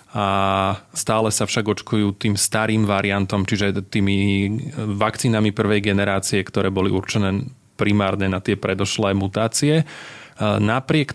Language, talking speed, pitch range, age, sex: Slovak, 120 wpm, 100-115 Hz, 30-49, male